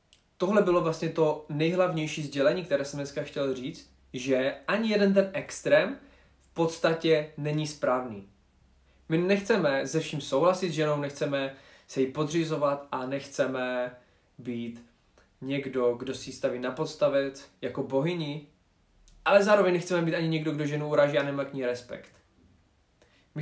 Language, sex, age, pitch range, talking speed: Czech, male, 20-39, 130-160 Hz, 145 wpm